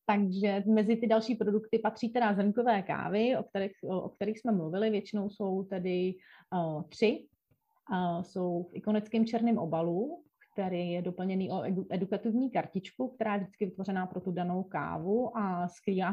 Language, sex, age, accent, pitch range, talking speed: Czech, female, 30-49, native, 180-220 Hz, 165 wpm